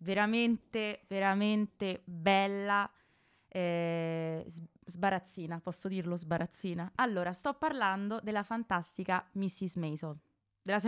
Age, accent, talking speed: 20-39, native, 90 wpm